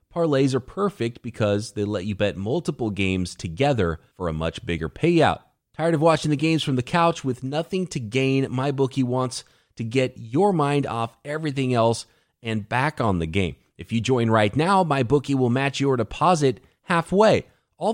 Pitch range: 115-160 Hz